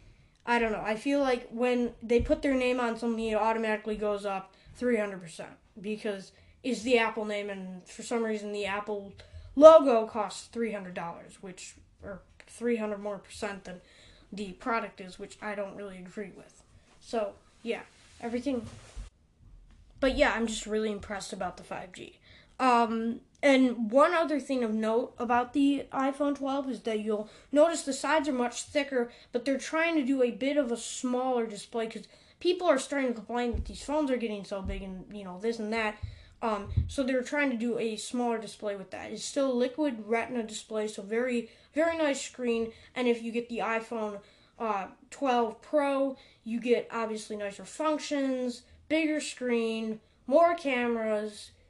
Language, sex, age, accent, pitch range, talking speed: English, female, 10-29, American, 210-260 Hz, 175 wpm